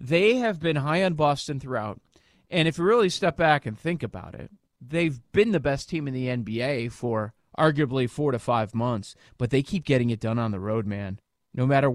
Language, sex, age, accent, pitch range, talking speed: English, male, 30-49, American, 130-185 Hz, 215 wpm